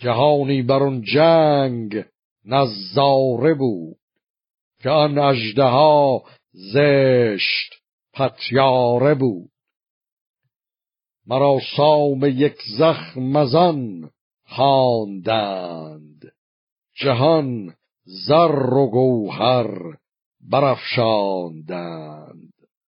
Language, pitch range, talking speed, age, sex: Persian, 115-145 Hz, 55 wpm, 50-69, male